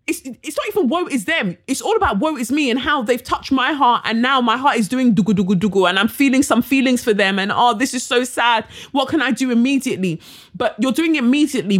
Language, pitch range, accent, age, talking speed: English, 205-280 Hz, British, 20-39, 260 wpm